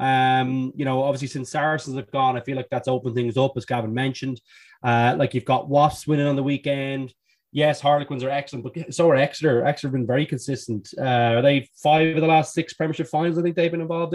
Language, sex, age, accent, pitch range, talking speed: English, male, 20-39, Irish, 130-155 Hz, 235 wpm